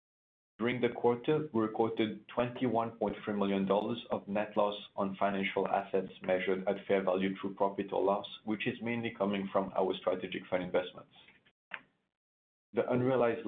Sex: male